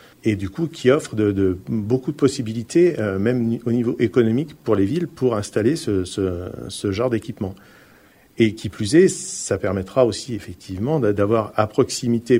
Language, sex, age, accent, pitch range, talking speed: French, male, 50-69, French, 100-120 Hz, 175 wpm